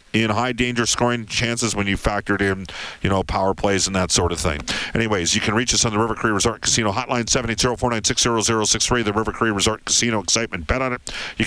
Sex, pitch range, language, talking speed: male, 100-125 Hz, English, 210 wpm